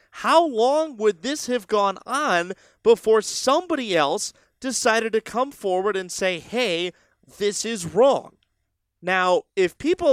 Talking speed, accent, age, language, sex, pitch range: 135 wpm, American, 30-49, English, male, 170-225 Hz